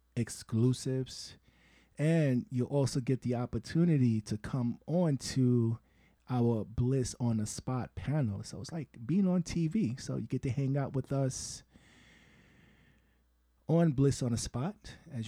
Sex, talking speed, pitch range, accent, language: male, 145 wpm, 105-130 Hz, American, English